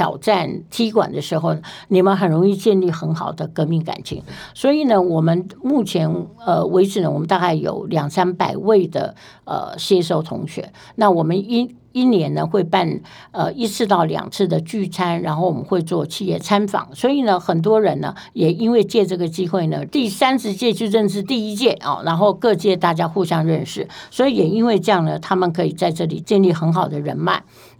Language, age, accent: Chinese, 60-79, American